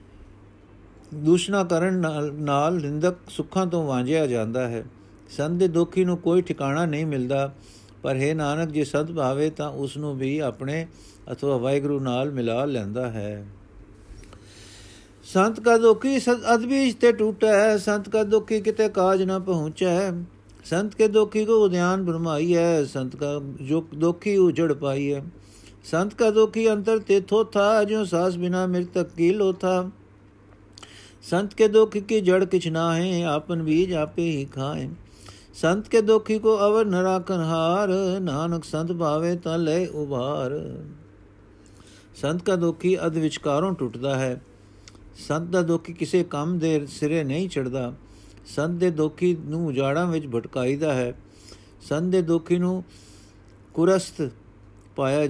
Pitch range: 120-185 Hz